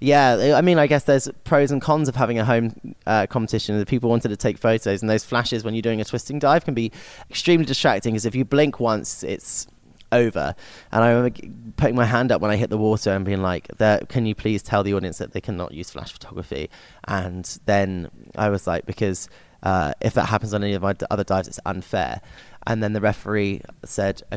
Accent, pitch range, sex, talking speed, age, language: British, 105-125 Hz, male, 230 wpm, 20-39, English